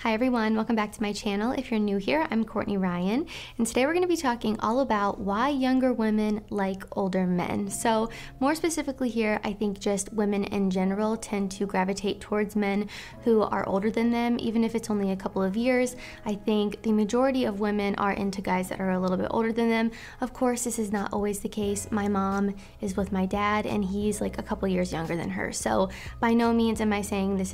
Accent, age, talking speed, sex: American, 20-39, 230 wpm, female